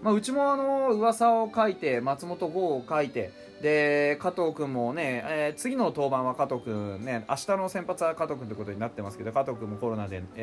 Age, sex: 20-39, male